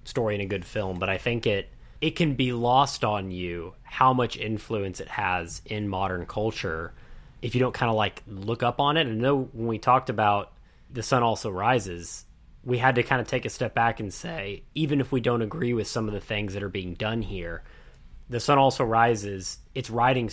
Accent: American